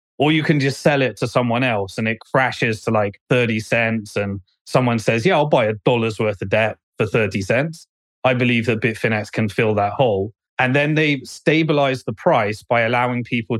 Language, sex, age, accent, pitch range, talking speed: English, male, 30-49, British, 115-135 Hz, 205 wpm